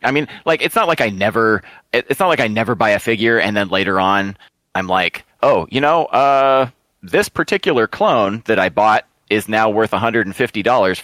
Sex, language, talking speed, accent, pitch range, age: male, English, 195 wpm, American, 90-115 Hz, 30-49